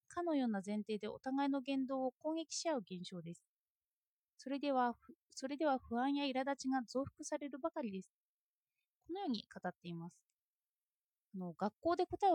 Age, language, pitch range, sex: 20-39, Japanese, 225-325 Hz, female